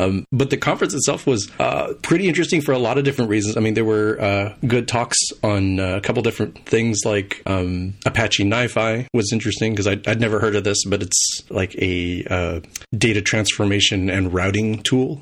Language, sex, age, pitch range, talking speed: English, male, 30-49, 95-110 Hz, 200 wpm